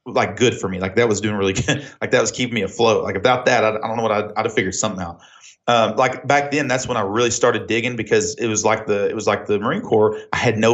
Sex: male